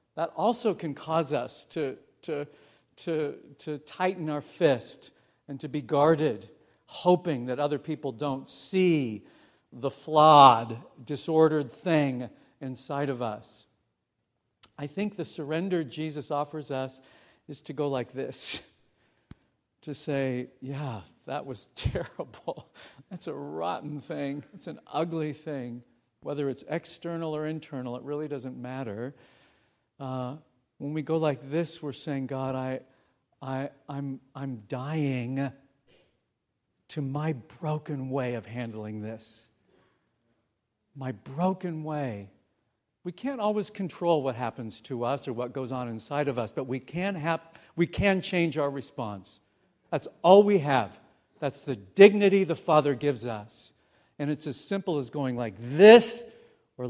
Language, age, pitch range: English, 50-69, 125-155 Hz